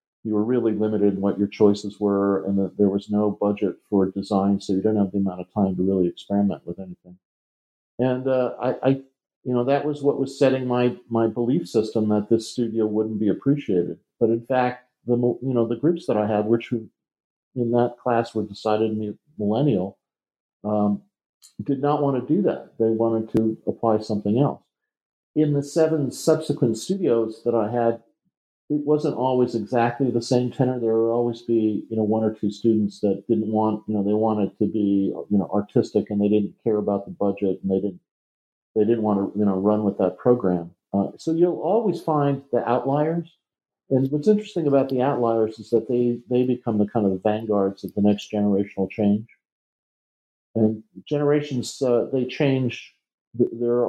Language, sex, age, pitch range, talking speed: English, male, 50-69, 105-125 Hz, 195 wpm